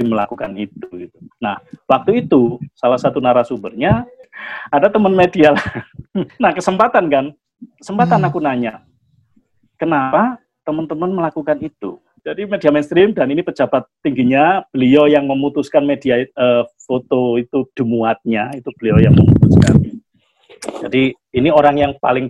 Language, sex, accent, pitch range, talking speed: Indonesian, male, native, 120-155 Hz, 125 wpm